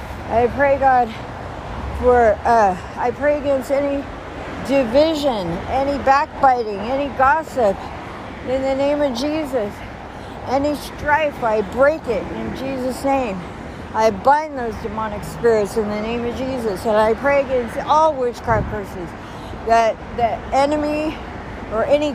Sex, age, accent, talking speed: female, 50-69, American, 135 wpm